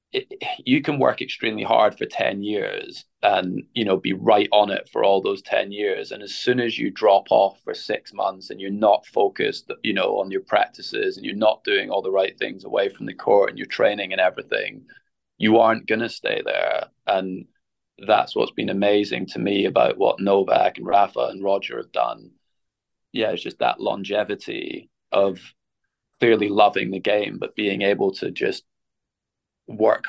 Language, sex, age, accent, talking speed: English, male, 20-39, British, 190 wpm